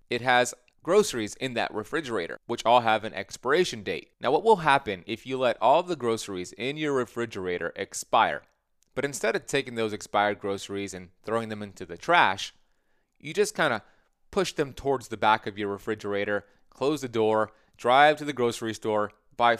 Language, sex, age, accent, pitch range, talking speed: English, male, 30-49, American, 105-140 Hz, 185 wpm